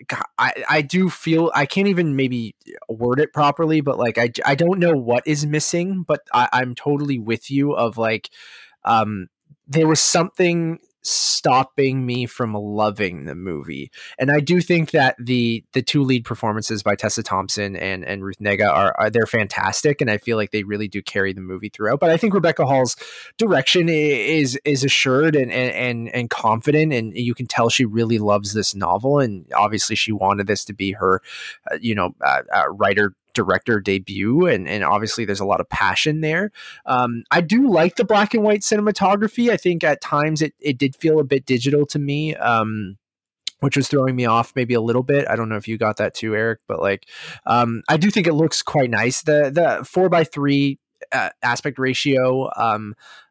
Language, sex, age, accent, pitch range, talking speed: English, male, 20-39, American, 110-155 Hz, 200 wpm